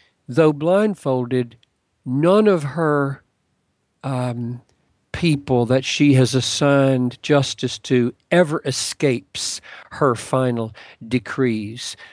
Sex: male